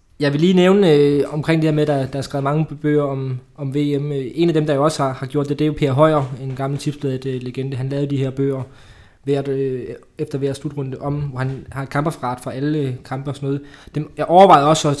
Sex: male